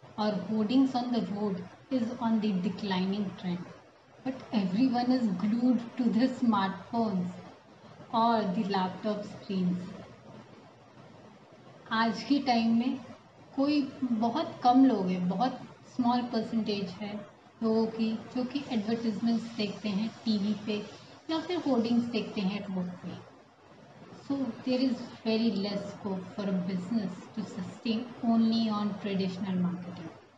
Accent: native